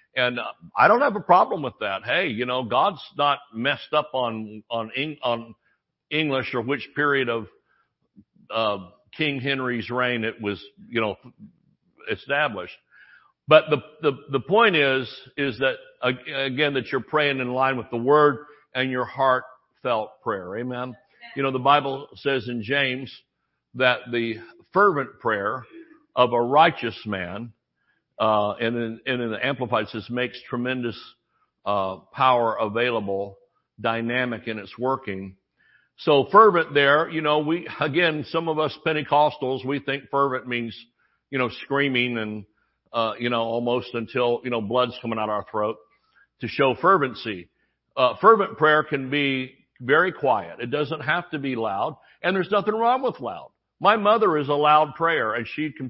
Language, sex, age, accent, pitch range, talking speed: English, male, 60-79, American, 115-145 Hz, 160 wpm